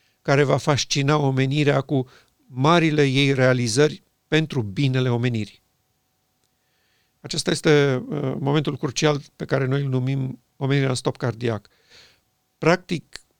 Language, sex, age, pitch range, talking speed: Romanian, male, 50-69, 130-155 Hz, 110 wpm